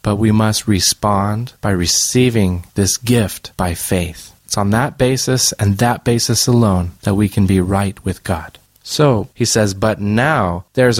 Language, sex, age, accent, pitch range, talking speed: English, male, 30-49, American, 100-120 Hz, 170 wpm